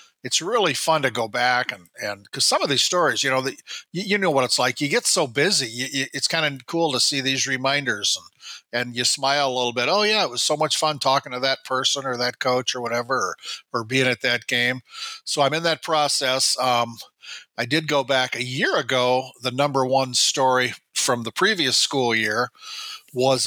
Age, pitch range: 50-69, 120-140 Hz